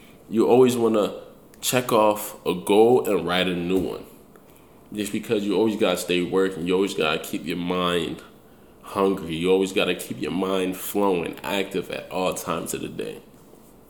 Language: English